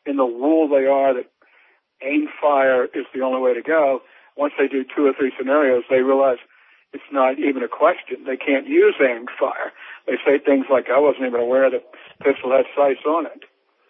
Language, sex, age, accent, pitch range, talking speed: English, male, 60-79, American, 130-155 Hz, 205 wpm